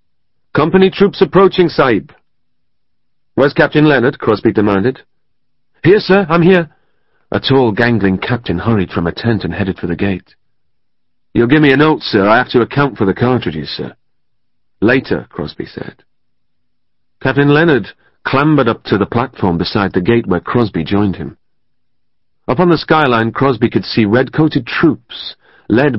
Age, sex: 40-59, male